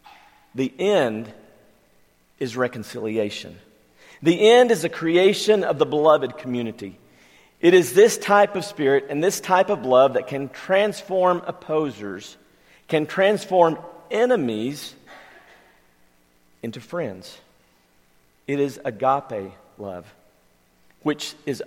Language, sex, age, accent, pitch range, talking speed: English, male, 50-69, American, 105-170 Hz, 110 wpm